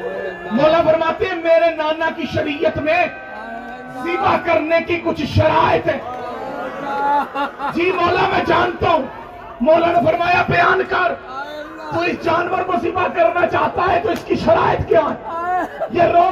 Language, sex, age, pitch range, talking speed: Urdu, male, 40-59, 320-360 Hz, 145 wpm